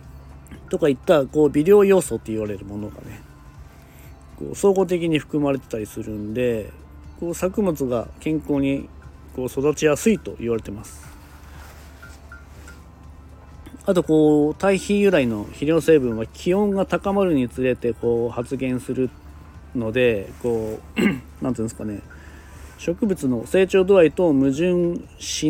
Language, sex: Japanese, male